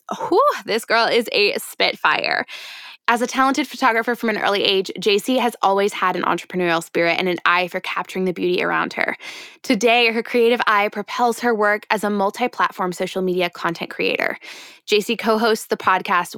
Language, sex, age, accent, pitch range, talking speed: English, female, 20-39, American, 180-235 Hz, 170 wpm